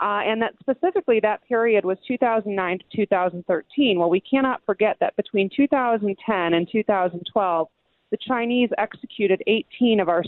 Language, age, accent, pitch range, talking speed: English, 30-49, American, 185-230 Hz, 145 wpm